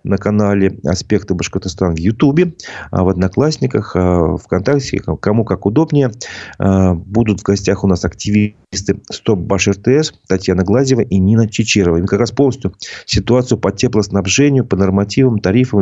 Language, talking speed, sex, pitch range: Russian, 145 wpm, male, 90-115 Hz